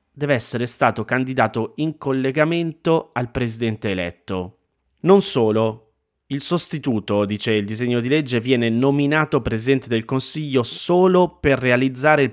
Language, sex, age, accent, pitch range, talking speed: Italian, male, 30-49, native, 105-130 Hz, 130 wpm